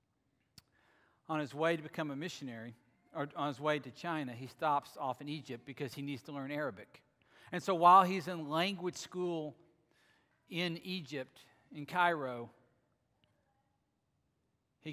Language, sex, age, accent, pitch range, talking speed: English, male, 40-59, American, 130-170 Hz, 145 wpm